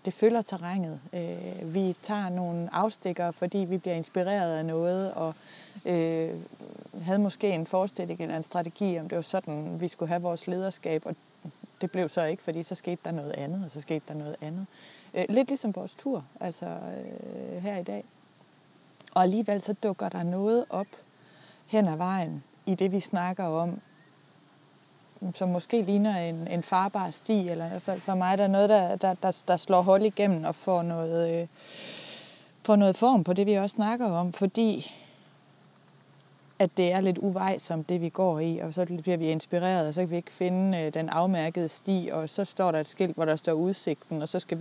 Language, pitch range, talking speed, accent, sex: Danish, 165-195 Hz, 195 wpm, native, female